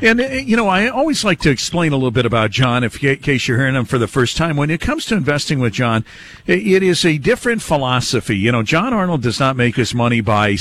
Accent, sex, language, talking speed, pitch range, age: American, male, English, 250 wpm, 120-155 Hz, 50-69